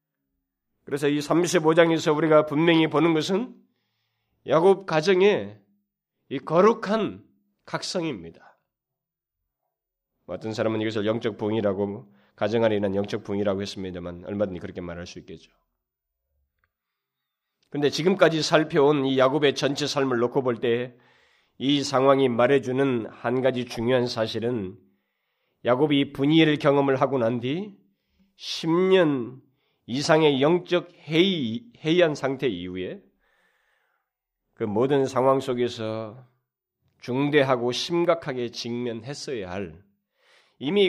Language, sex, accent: Korean, male, native